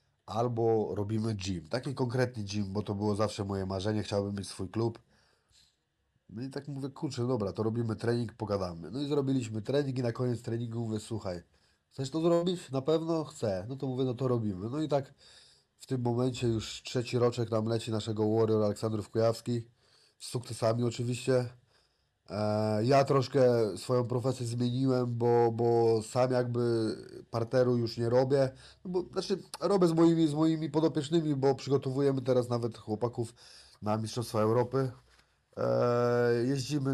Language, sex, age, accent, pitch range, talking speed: Polish, male, 30-49, native, 110-130 Hz, 155 wpm